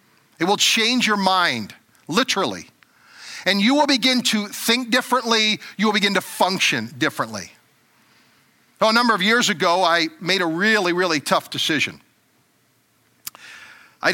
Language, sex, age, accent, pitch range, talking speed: English, male, 50-69, American, 185-235 Hz, 140 wpm